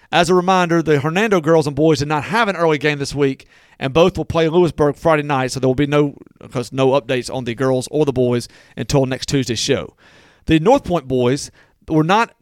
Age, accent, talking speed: 40-59, American, 225 wpm